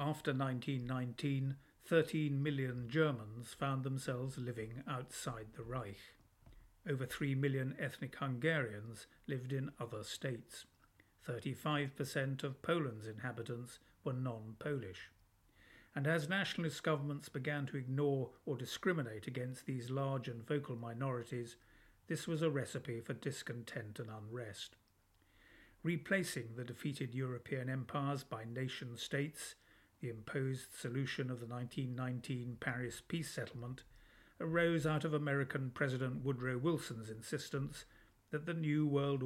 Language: English